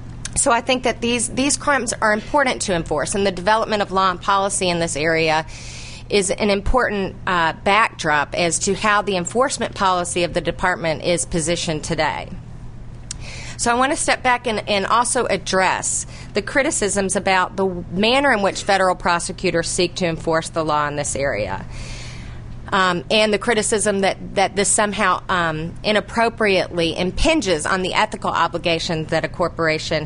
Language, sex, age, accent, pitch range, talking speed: English, female, 40-59, American, 170-215 Hz, 165 wpm